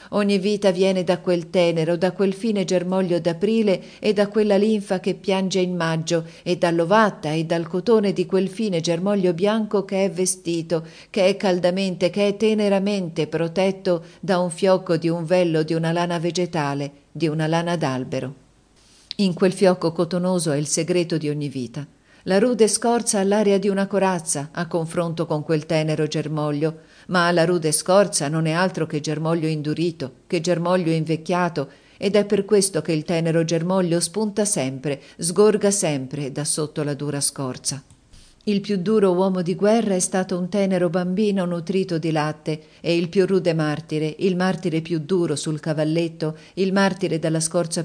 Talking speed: 170 wpm